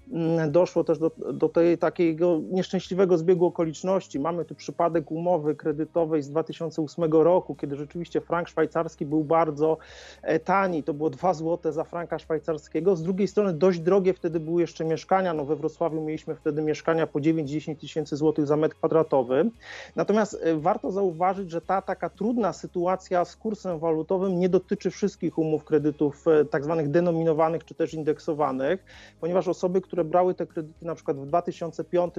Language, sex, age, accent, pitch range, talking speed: Polish, male, 30-49, native, 160-180 Hz, 155 wpm